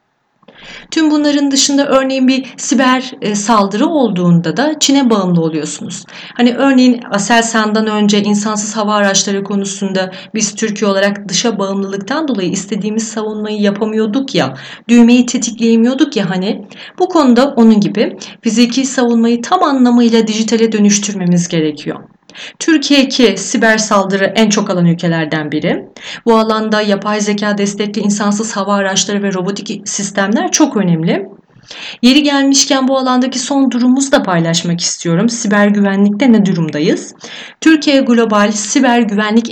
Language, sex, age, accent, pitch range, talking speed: Turkish, female, 30-49, native, 195-245 Hz, 130 wpm